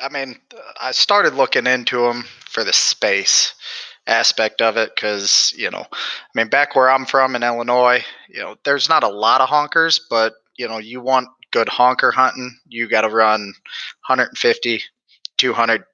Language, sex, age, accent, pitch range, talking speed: English, male, 20-39, American, 110-130 Hz, 175 wpm